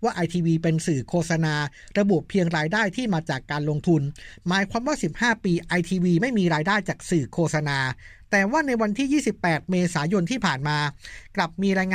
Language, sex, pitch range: Thai, male, 155-200 Hz